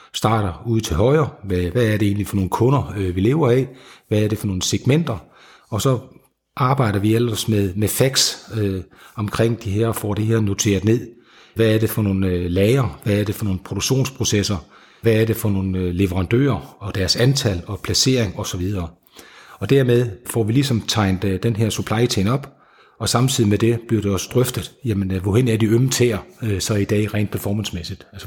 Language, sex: Danish, male